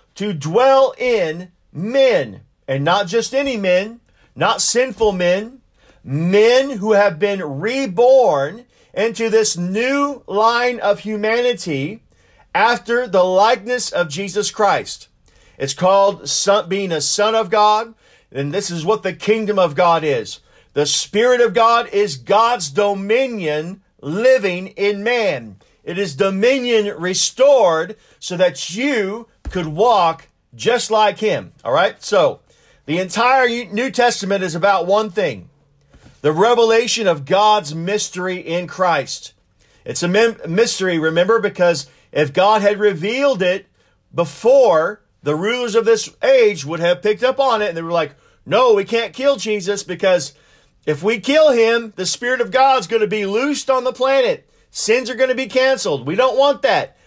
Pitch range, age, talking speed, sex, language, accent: 180-245 Hz, 50-69, 150 wpm, male, English, American